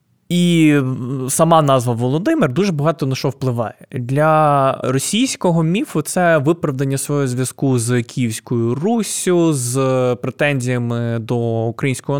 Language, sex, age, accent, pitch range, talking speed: Ukrainian, male, 20-39, native, 125-160 Hz, 115 wpm